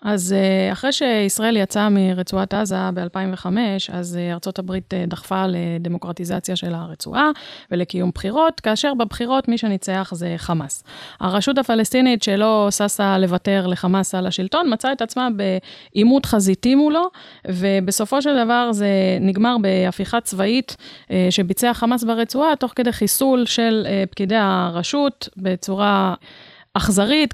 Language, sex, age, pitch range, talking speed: Hebrew, female, 30-49, 190-245 Hz, 115 wpm